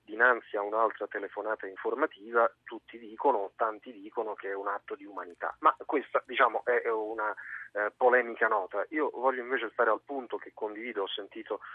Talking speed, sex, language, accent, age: 170 wpm, male, Italian, native, 40-59